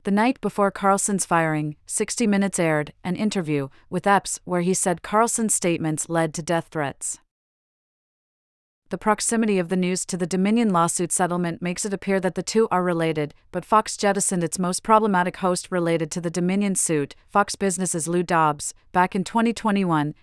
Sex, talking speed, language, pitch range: female, 170 wpm, English, 165-200 Hz